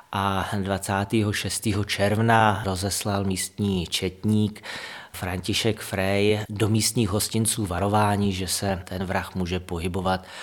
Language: Czech